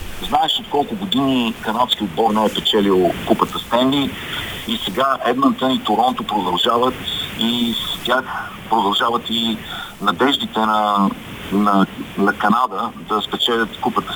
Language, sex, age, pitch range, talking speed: Bulgarian, male, 50-69, 110-135 Hz, 120 wpm